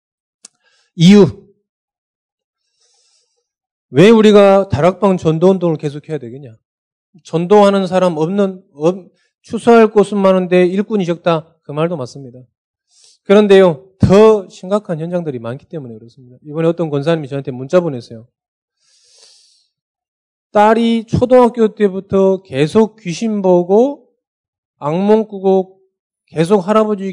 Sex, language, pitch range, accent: male, Korean, 150-215 Hz, native